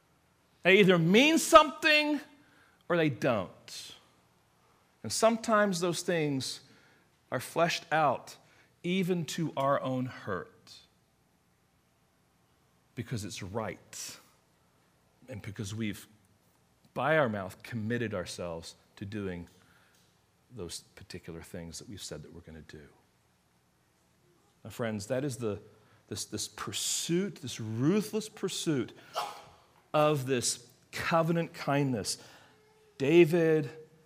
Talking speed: 105 wpm